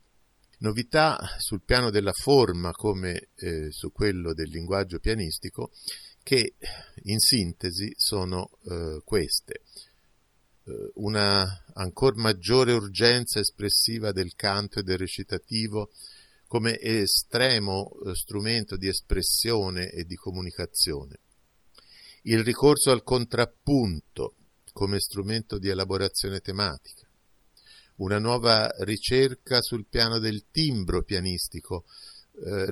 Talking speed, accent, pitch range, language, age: 100 wpm, native, 90-115 Hz, Italian, 50-69